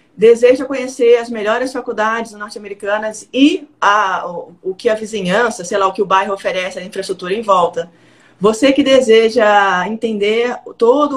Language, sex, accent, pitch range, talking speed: Portuguese, female, Brazilian, 195-260 Hz, 155 wpm